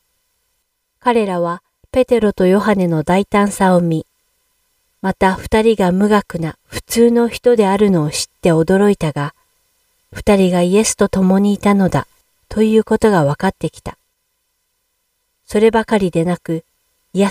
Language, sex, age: Japanese, female, 40-59